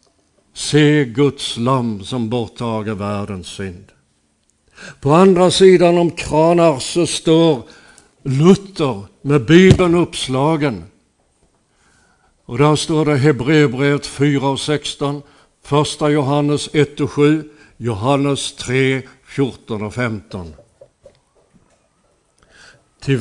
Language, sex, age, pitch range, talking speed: Swedish, male, 60-79, 125-145 Hz, 95 wpm